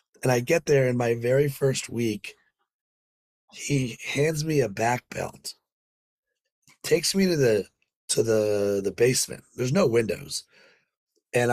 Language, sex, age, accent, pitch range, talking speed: English, male, 30-49, American, 110-145 Hz, 140 wpm